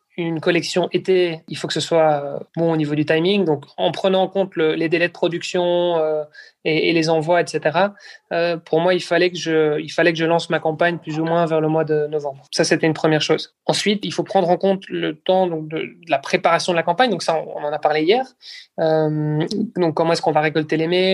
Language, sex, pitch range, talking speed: French, male, 155-180 Hz, 255 wpm